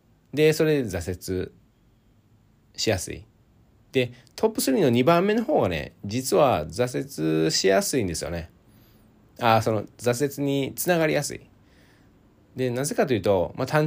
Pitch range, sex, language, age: 95-130 Hz, male, Japanese, 20-39